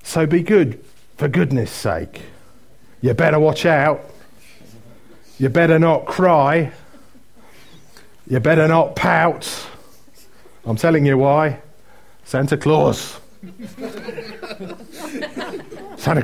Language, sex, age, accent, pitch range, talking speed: English, male, 40-59, British, 120-160 Hz, 90 wpm